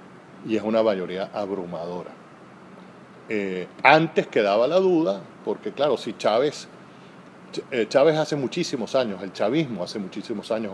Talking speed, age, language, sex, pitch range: 130 wpm, 40-59, Spanish, male, 100-130 Hz